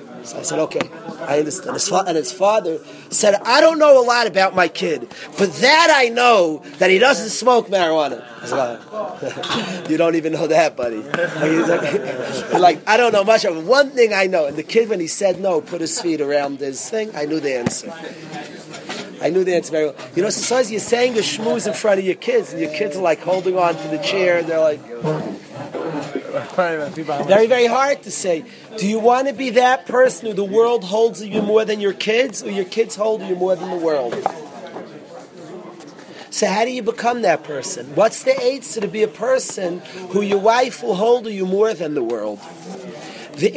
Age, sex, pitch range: 30-49, male, 165-230 Hz